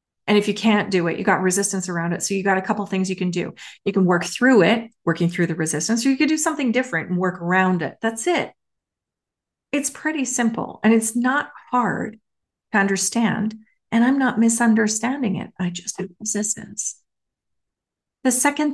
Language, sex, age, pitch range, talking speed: English, female, 30-49, 175-225 Hz, 195 wpm